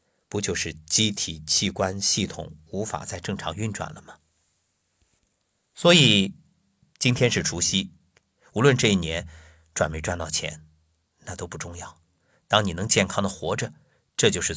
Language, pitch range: Chinese, 80-140 Hz